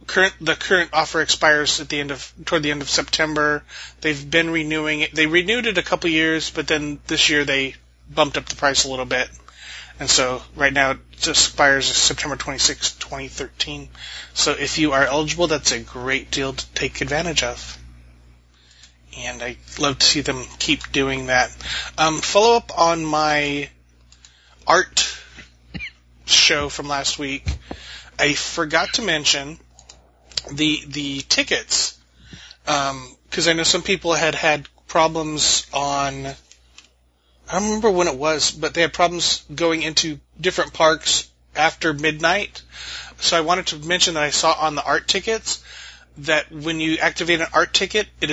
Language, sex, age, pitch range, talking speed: English, male, 30-49, 130-160 Hz, 165 wpm